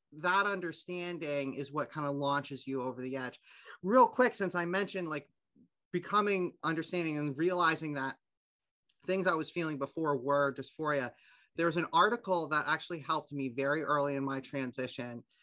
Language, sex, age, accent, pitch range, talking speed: English, male, 30-49, American, 135-175 Hz, 160 wpm